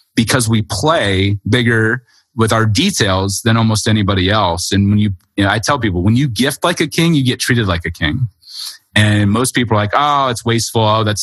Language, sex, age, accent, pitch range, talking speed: English, male, 30-49, American, 105-125 Hz, 220 wpm